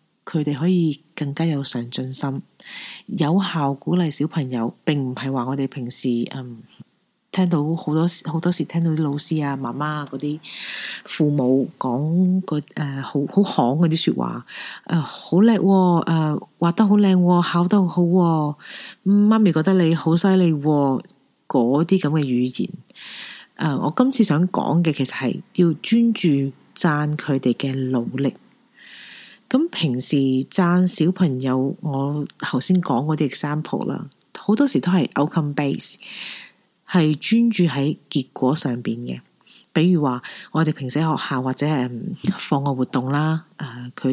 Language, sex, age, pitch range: Chinese, female, 40-59, 135-170 Hz